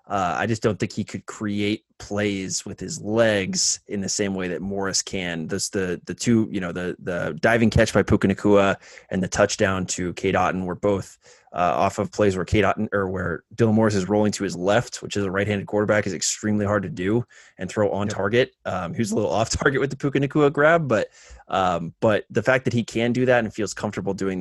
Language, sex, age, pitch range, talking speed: English, male, 20-39, 95-110 Hz, 235 wpm